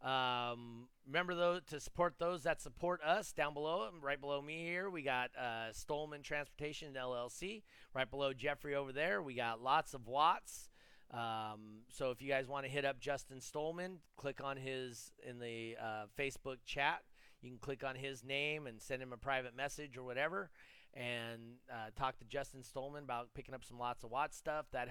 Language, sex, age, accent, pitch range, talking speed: English, male, 30-49, American, 120-150 Hz, 190 wpm